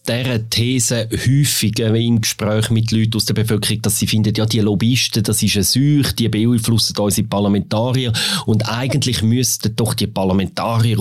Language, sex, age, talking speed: German, male, 30-49, 160 wpm